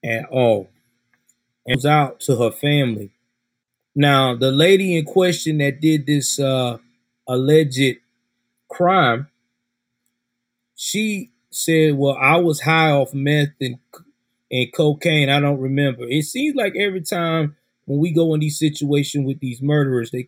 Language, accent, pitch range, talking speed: English, American, 120-155 Hz, 140 wpm